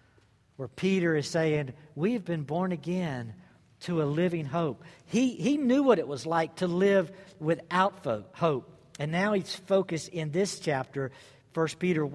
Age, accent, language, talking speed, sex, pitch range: 50-69, American, English, 165 wpm, male, 140-180 Hz